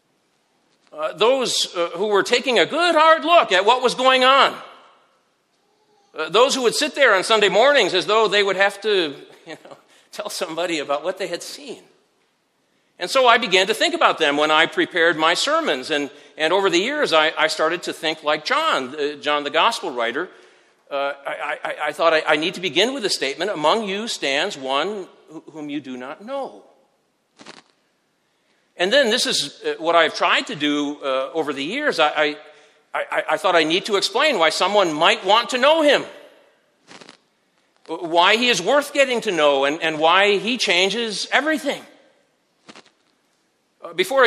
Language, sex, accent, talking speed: English, male, American, 180 wpm